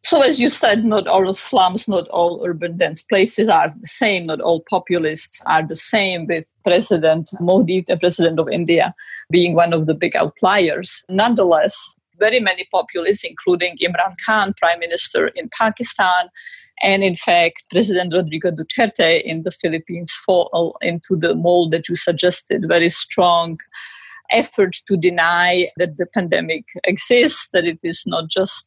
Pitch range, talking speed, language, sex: 175-215 Hz, 155 wpm, English, female